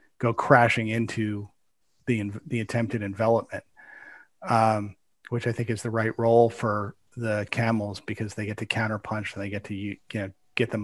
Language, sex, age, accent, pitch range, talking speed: English, male, 40-59, American, 110-125 Hz, 170 wpm